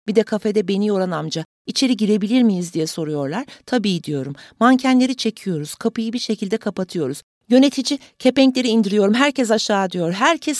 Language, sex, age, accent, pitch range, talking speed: Turkish, female, 40-59, native, 150-230 Hz, 145 wpm